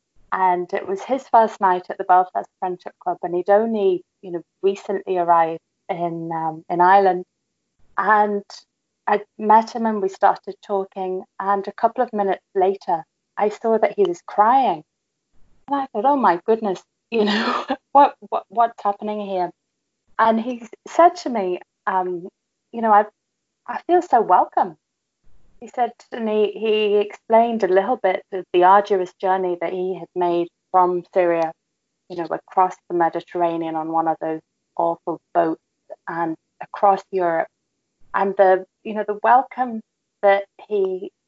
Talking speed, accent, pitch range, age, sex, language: 160 wpm, British, 180-225 Hz, 30-49, female, English